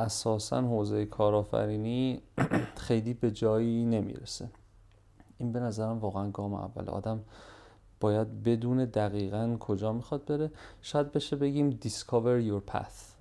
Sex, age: male, 40-59